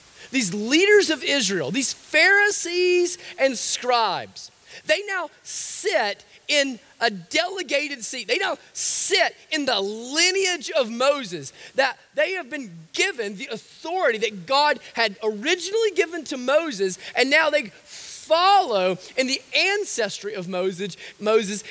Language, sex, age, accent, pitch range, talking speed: English, male, 30-49, American, 205-325 Hz, 130 wpm